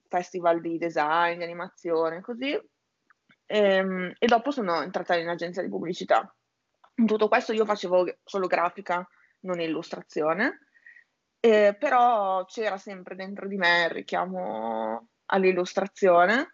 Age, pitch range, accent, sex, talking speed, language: 20-39, 175-205 Hz, native, female, 120 wpm, Italian